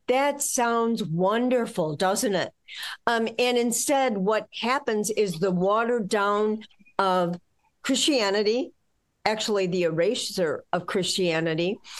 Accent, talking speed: American, 105 wpm